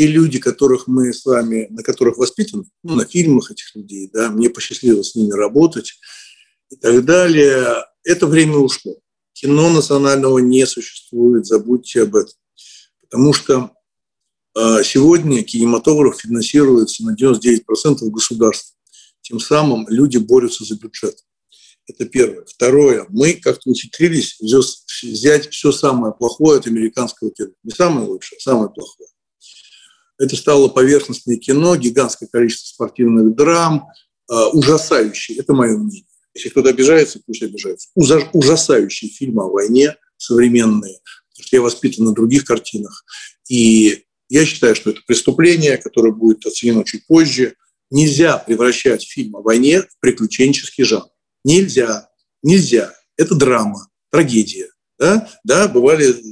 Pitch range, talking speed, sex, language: 115-175 Hz, 130 wpm, male, Russian